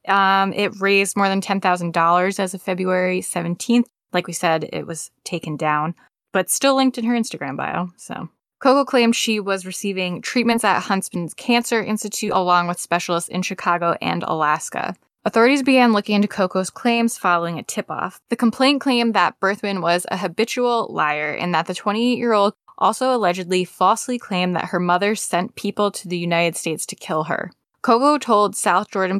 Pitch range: 175-225 Hz